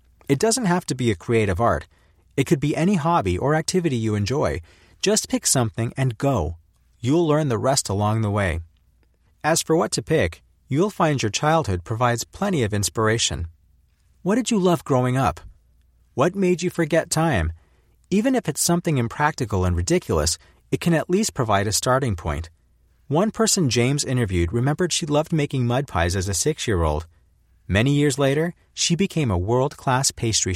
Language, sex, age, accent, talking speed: English, male, 40-59, American, 175 wpm